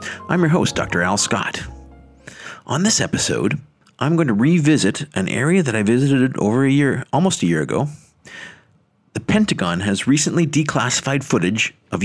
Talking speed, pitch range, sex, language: 160 wpm, 110-155 Hz, male, English